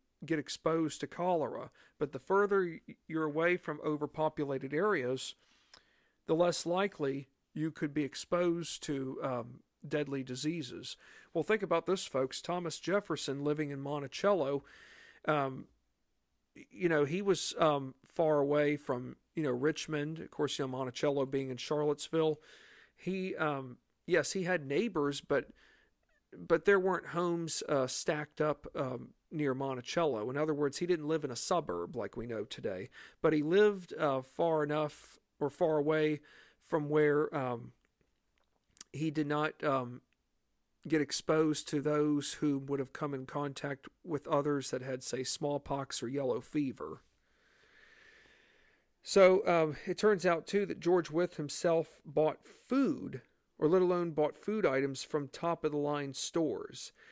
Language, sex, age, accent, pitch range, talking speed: English, male, 50-69, American, 140-175 Hz, 145 wpm